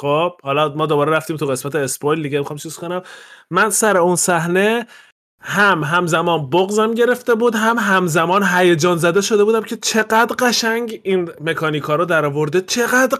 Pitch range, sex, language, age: 150-205 Hz, male, Persian, 20-39